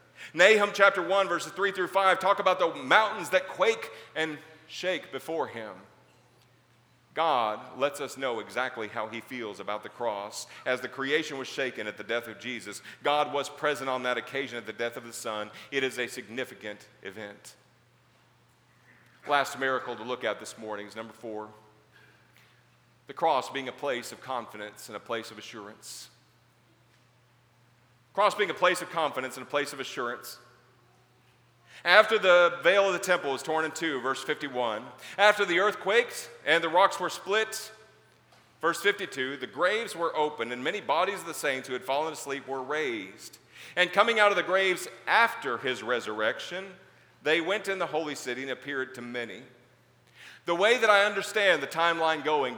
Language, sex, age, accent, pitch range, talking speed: English, male, 40-59, American, 120-180 Hz, 175 wpm